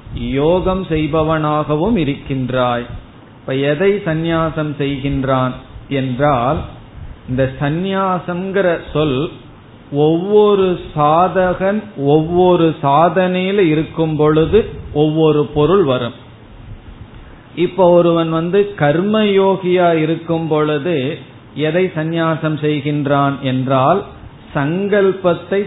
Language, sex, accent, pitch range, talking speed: Tamil, male, native, 130-175 Hz, 75 wpm